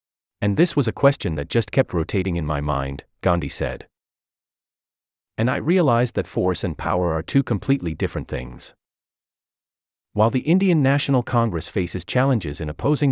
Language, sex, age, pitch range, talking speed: English, male, 40-59, 80-115 Hz, 160 wpm